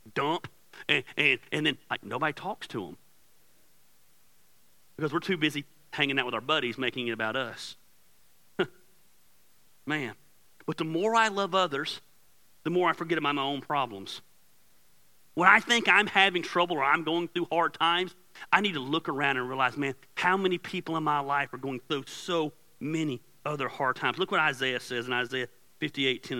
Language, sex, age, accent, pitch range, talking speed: English, male, 40-59, American, 145-200 Hz, 180 wpm